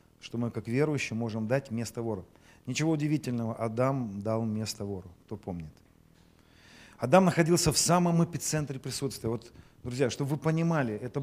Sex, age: male, 40-59